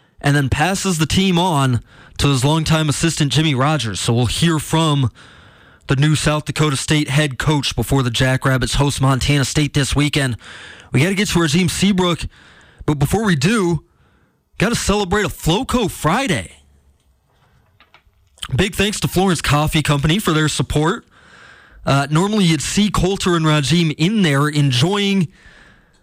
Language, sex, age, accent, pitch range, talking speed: English, male, 20-39, American, 135-165 Hz, 155 wpm